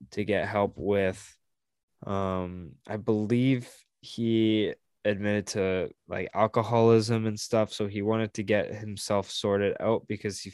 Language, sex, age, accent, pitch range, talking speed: English, male, 10-29, American, 100-120 Hz, 135 wpm